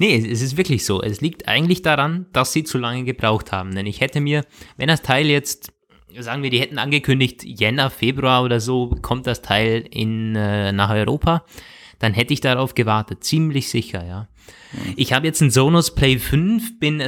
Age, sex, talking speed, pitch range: 20-39, male, 190 wpm, 110-135 Hz